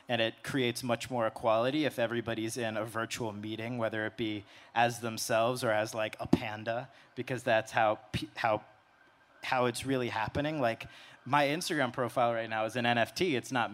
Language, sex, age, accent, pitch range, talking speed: English, male, 30-49, American, 110-125 Hz, 180 wpm